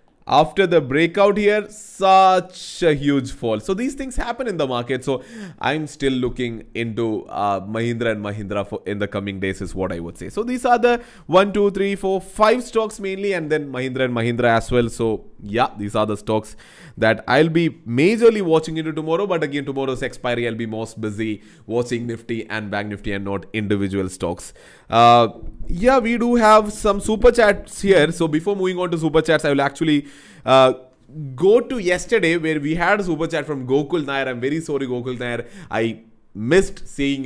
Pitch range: 115-185 Hz